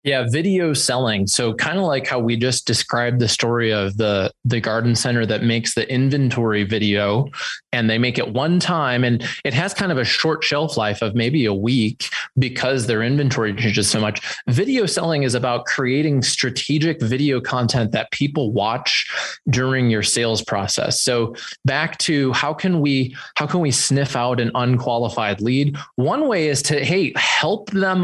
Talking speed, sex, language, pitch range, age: 180 wpm, male, English, 115-150 Hz, 20-39